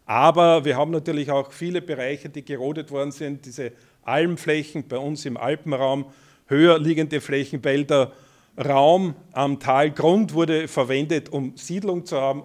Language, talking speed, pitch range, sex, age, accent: German, 140 wpm, 140-180 Hz, male, 50-69, Austrian